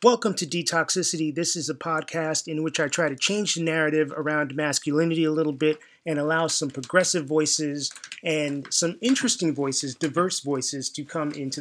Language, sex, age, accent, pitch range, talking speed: English, male, 30-49, American, 145-170 Hz, 175 wpm